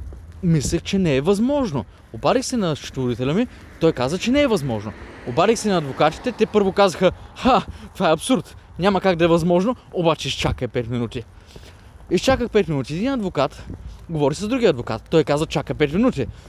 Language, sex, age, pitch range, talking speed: Bulgarian, male, 20-39, 140-210 Hz, 180 wpm